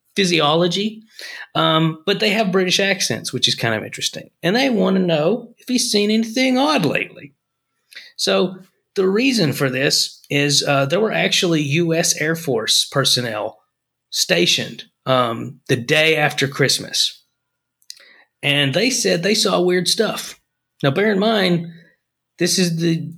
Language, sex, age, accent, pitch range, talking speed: English, male, 30-49, American, 145-195 Hz, 150 wpm